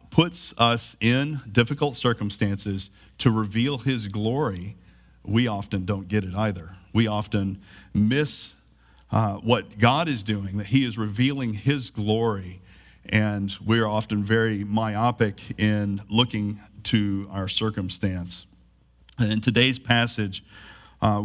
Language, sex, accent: English, male, American